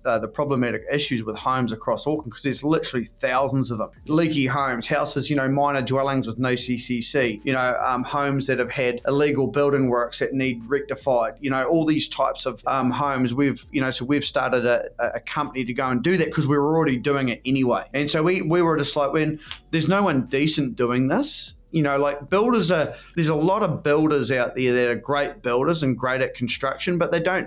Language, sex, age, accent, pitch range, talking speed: English, male, 20-39, Australian, 125-155 Hz, 225 wpm